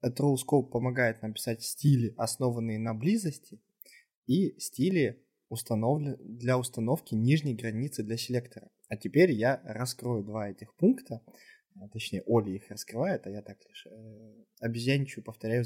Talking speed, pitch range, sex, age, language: 125 wpm, 115-150 Hz, male, 20-39, Russian